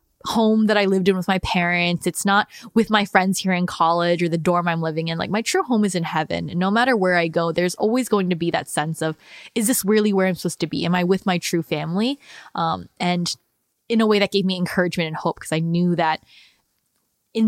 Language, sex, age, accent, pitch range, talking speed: English, female, 10-29, American, 175-215 Hz, 250 wpm